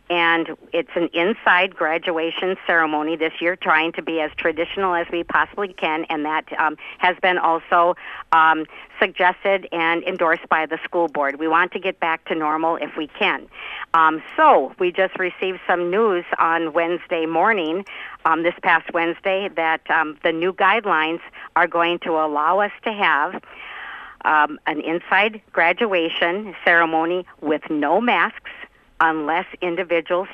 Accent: American